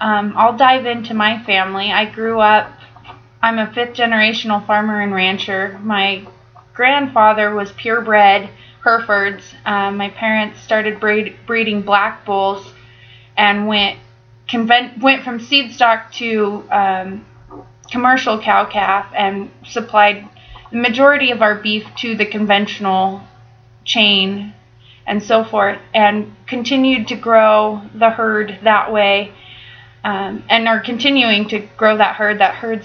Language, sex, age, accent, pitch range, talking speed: English, female, 20-39, American, 200-225 Hz, 130 wpm